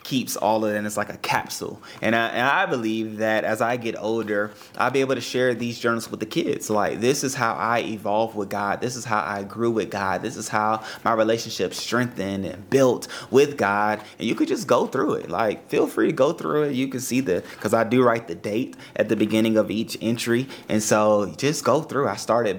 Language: English